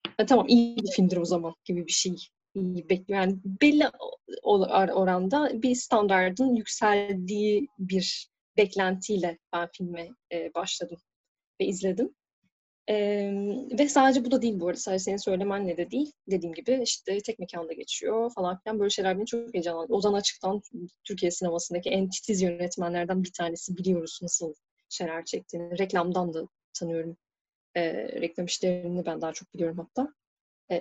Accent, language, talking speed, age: native, Turkish, 140 wpm, 10-29